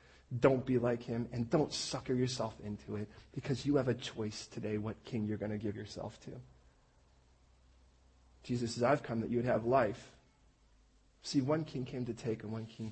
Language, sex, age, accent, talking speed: English, male, 40-59, American, 195 wpm